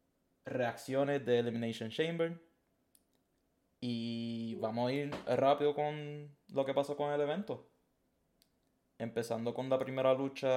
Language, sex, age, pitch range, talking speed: Spanish, male, 20-39, 110-130 Hz, 120 wpm